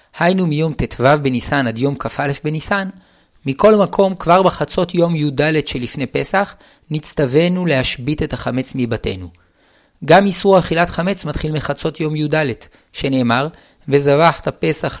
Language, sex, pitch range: Hebrew, male, 130-170 Hz